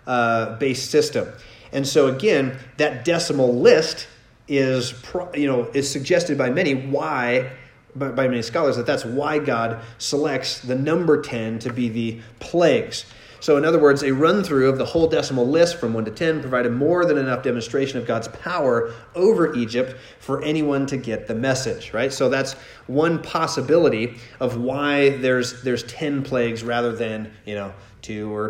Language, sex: English, male